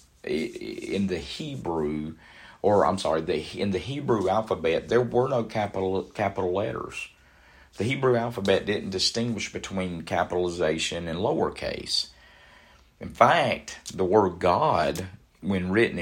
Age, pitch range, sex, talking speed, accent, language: 50-69, 80-105 Hz, male, 125 wpm, American, English